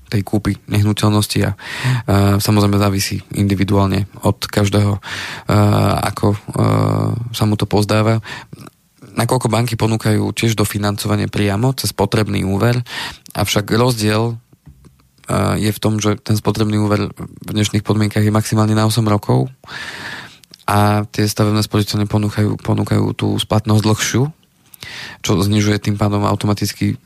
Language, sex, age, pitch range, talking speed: Slovak, male, 20-39, 105-110 Hz, 130 wpm